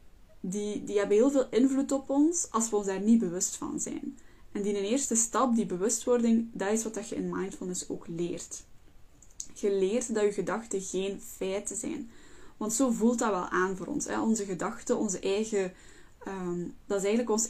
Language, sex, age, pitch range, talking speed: Dutch, female, 10-29, 190-235 Hz, 185 wpm